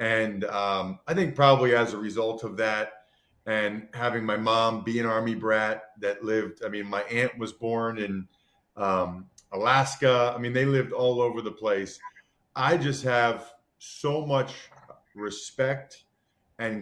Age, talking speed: 40-59, 155 wpm